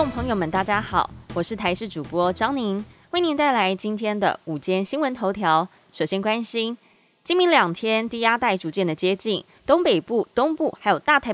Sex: female